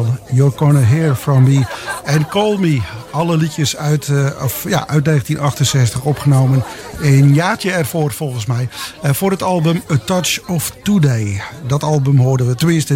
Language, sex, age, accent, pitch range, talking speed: English, male, 50-69, Dutch, 135-175 Hz, 160 wpm